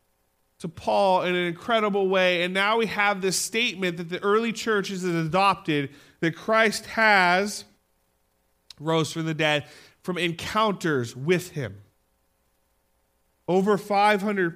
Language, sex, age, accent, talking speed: English, male, 40-59, American, 130 wpm